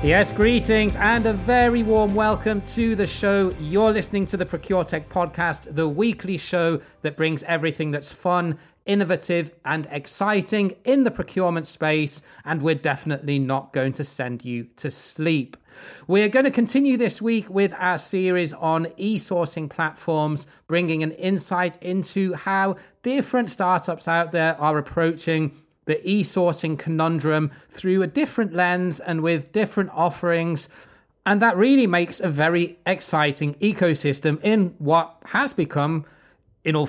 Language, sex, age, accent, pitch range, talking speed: English, male, 30-49, British, 155-200 Hz, 145 wpm